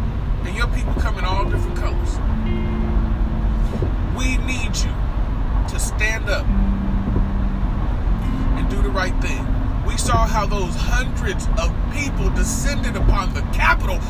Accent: American